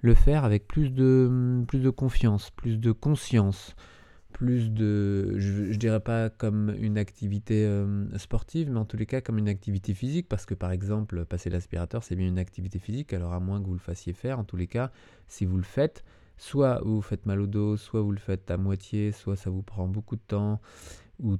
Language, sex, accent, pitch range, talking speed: French, male, French, 95-120 Hz, 220 wpm